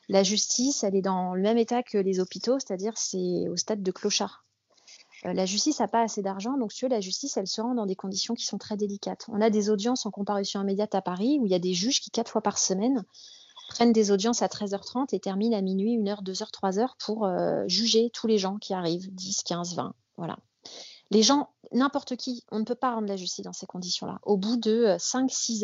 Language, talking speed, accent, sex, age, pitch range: French, 235 wpm, French, female, 30-49, 190-230 Hz